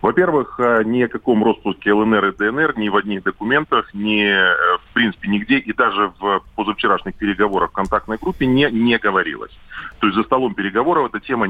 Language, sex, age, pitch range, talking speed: Russian, male, 20-39, 100-110 Hz, 175 wpm